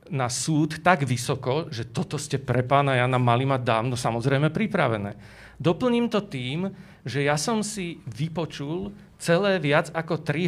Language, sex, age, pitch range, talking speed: Slovak, male, 40-59, 140-175 Hz, 160 wpm